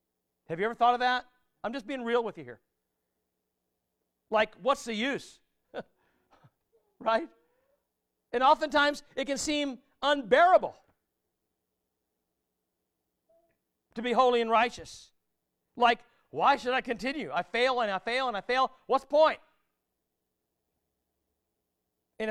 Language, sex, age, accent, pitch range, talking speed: English, male, 50-69, American, 220-280 Hz, 125 wpm